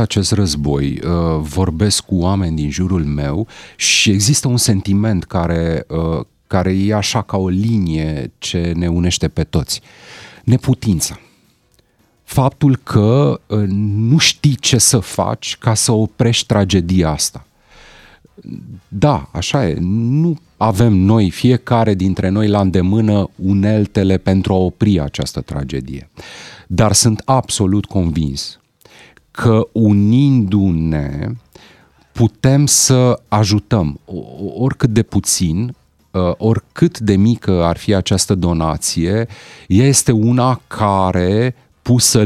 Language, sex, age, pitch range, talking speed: Romanian, male, 30-49, 90-115 Hz, 110 wpm